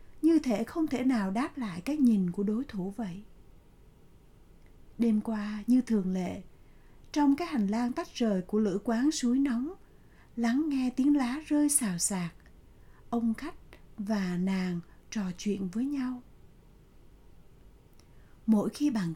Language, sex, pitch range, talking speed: Vietnamese, female, 195-260 Hz, 145 wpm